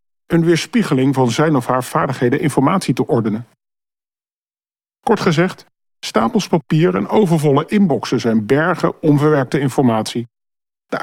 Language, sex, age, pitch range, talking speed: Dutch, male, 40-59, 125-165 Hz, 120 wpm